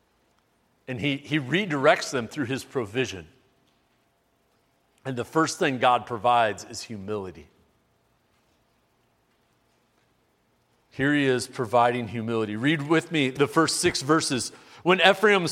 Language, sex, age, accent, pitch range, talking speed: English, male, 40-59, American, 135-215 Hz, 115 wpm